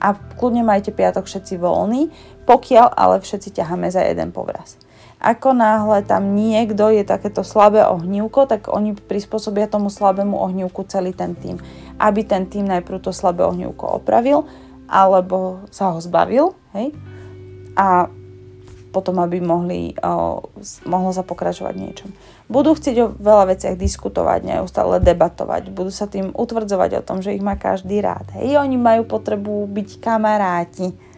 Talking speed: 145 wpm